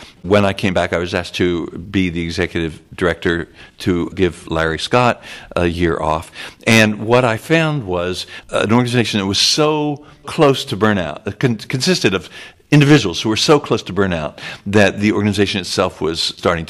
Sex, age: male, 60-79